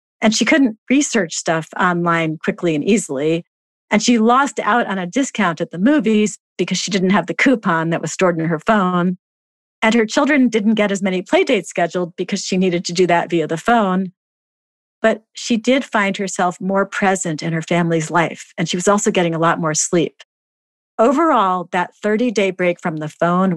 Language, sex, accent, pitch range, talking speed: English, female, American, 170-220 Hz, 195 wpm